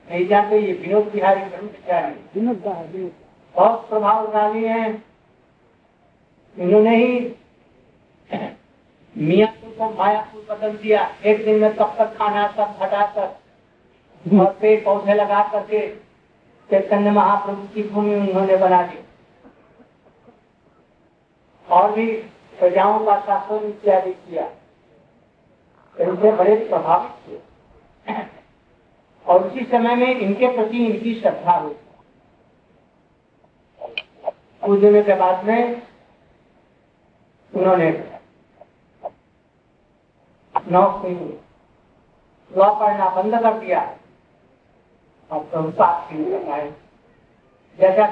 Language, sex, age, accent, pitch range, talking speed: Hindi, male, 60-79, native, 190-220 Hz, 50 wpm